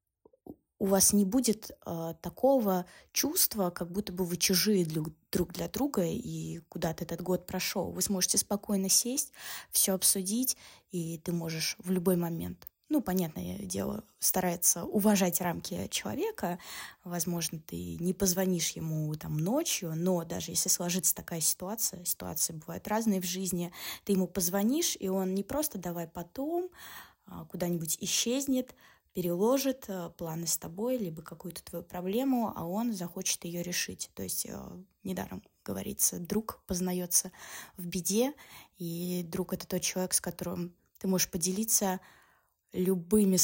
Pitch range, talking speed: 175-200 Hz, 140 wpm